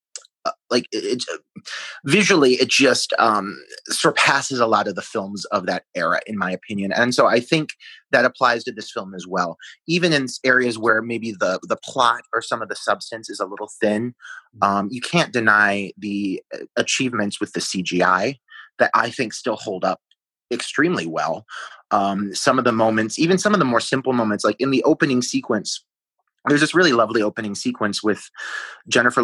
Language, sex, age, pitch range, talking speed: English, male, 30-49, 100-125 Hz, 185 wpm